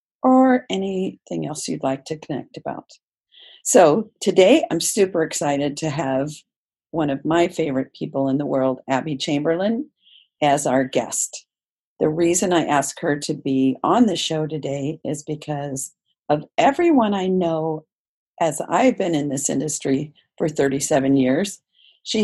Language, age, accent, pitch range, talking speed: English, 50-69, American, 150-200 Hz, 150 wpm